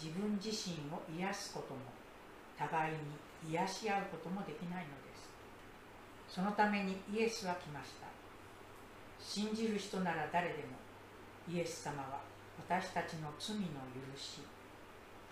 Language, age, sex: Japanese, 60-79, female